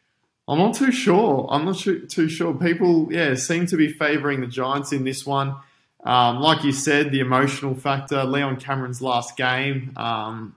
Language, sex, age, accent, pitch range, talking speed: English, male, 20-39, Australian, 120-140 Hz, 175 wpm